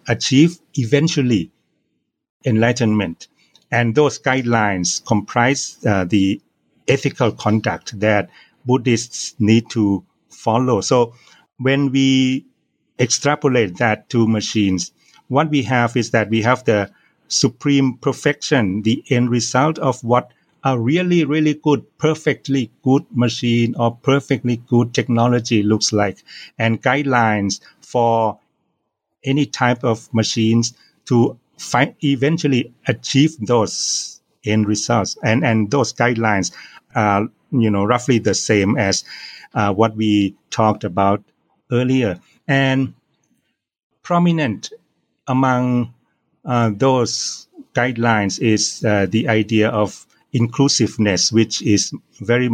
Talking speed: 110 wpm